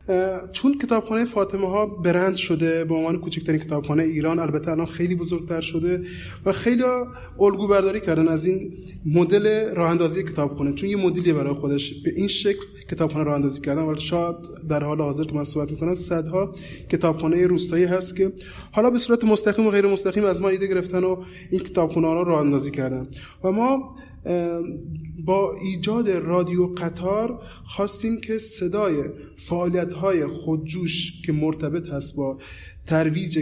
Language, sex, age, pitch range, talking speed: Persian, male, 20-39, 160-190 Hz, 160 wpm